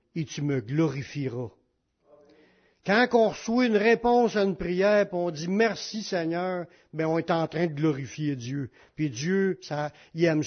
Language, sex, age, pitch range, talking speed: French, male, 60-79, 155-190 Hz, 180 wpm